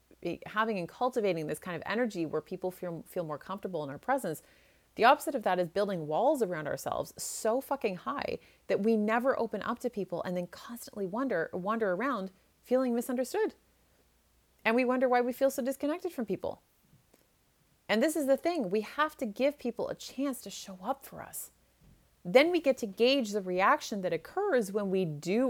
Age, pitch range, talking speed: 30-49, 175-250 Hz, 195 wpm